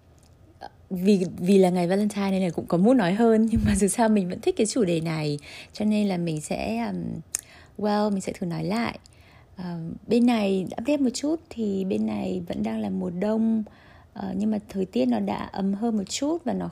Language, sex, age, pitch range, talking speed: Vietnamese, female, 20-39, 170-225 Hz, 225 wpm